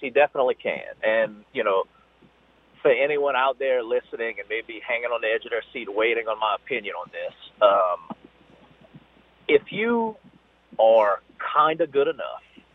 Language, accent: English, American